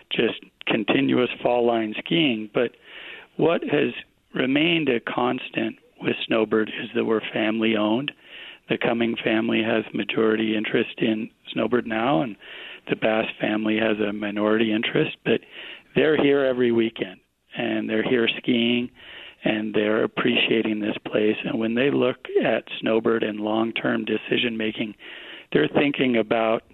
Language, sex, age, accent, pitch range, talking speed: English, male, 40-59, American, 110-120 Hz, 135 wpm